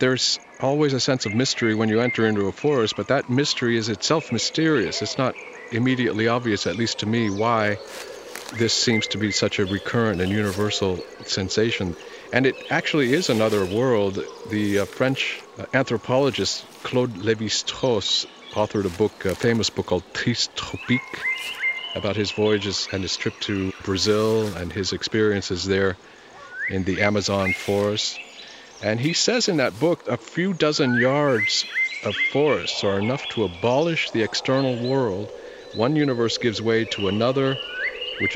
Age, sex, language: 50-69, male, English